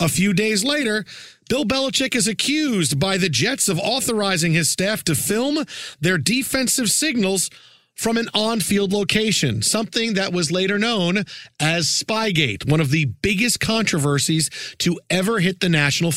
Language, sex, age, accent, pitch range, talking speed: English, male, 40-59, American, 155-210 Hz, 150 wpm